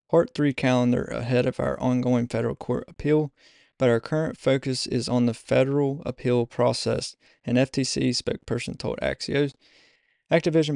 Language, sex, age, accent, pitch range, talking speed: English, male, 20-39, American, 115-135 Hz, 145 wpm